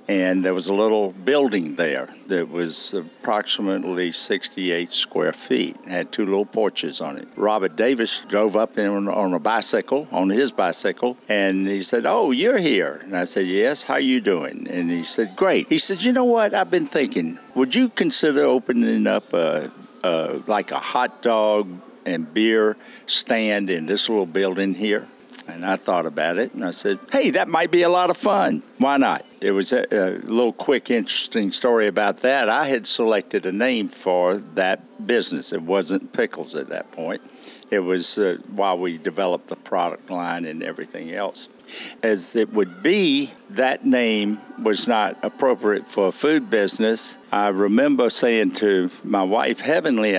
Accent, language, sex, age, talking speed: American, English, male, 60-79, 180 wpm